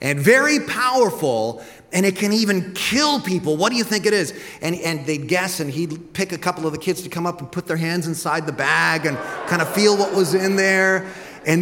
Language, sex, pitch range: English, male, 120-180 Hz